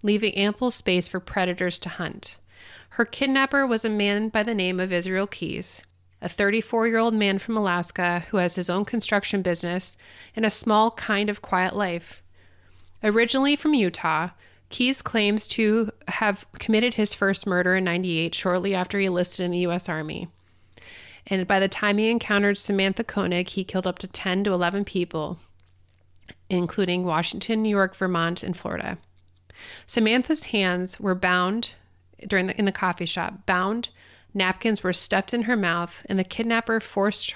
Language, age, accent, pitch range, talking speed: English, 30-49, American, 175-215 Hz, 160 wpm